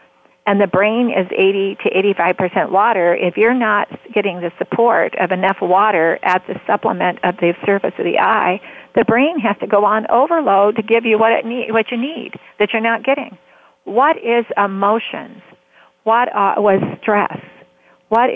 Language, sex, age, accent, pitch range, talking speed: English, female, 50-69, American, 180-225 Hz, 175 wpm